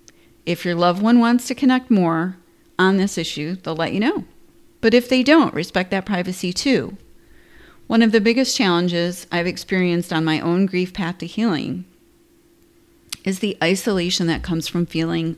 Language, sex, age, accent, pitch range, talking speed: English, female, 40-59, American, 175-215 Hz, 170 wpm